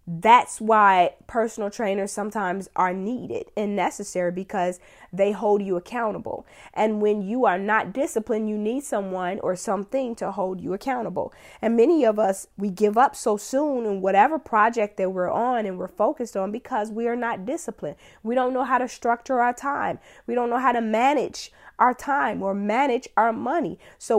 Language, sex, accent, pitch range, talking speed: English, female, American, 205-260 Hz, 185 wpm